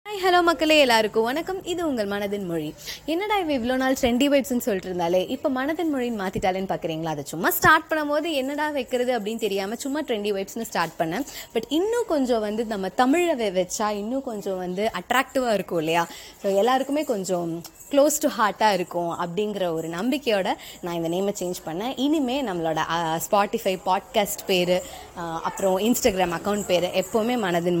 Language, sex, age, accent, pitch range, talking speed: Tamil, female, 20-39, native, 170-265 Hz, 170 wpm